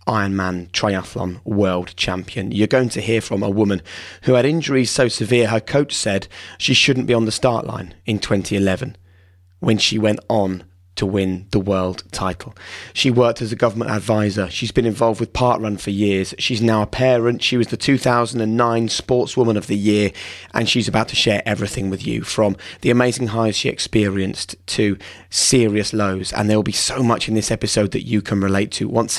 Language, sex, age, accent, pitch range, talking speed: English, male, 20-39, British, 100-120 Hz, 195 wpm